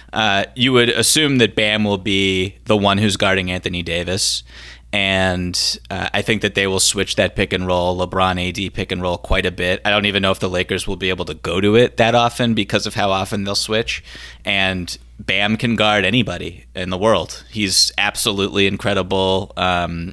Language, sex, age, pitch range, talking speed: English, male, 20-39, 90-105 Hz, 205 wpm